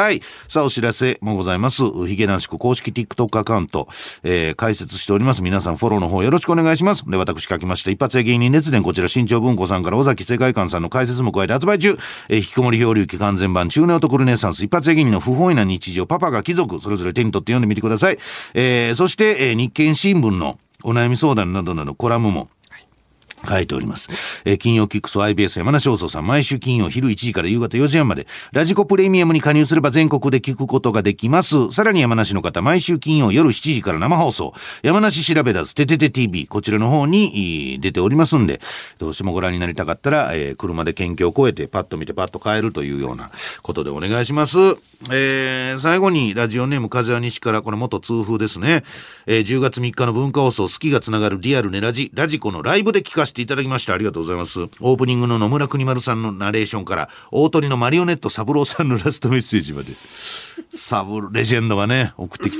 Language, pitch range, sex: Japanese, 100-140 Hz, male